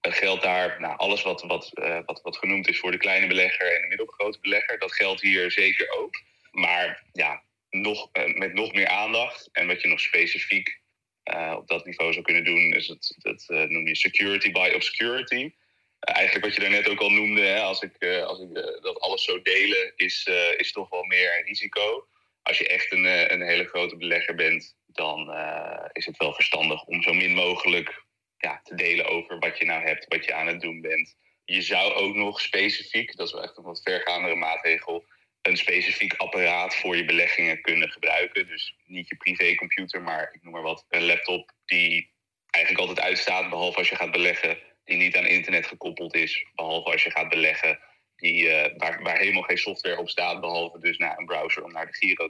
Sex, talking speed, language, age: male, 210 wpm, Dutch, 30-49